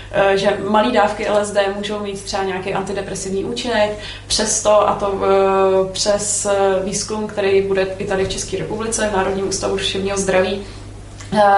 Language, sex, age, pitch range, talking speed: Czech, female, 20-39, 195-210 Hz, 135 wpm